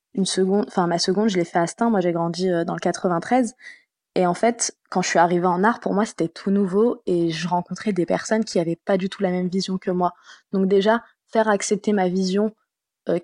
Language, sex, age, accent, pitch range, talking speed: English, female, 20-39, French, 180-215 Hz, 240 wpm